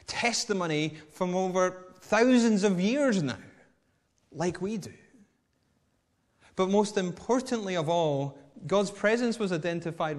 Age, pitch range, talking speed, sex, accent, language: 30-49, 130-185 Hz, 110 wpm, male, British, English